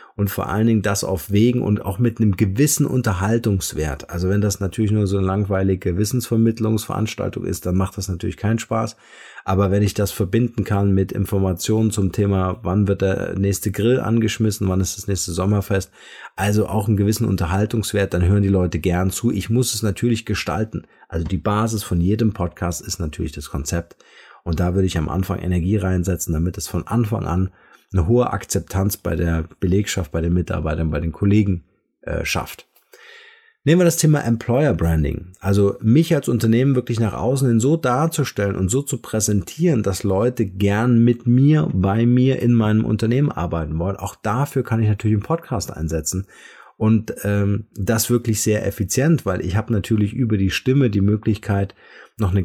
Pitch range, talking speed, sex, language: 95-115 Hz, 185 wpm, male, German